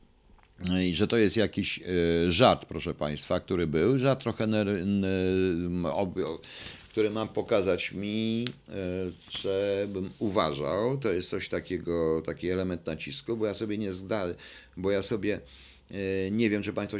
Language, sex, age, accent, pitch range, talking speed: Polish, male, 50-69, native, 85-110 Hz, 135 wpm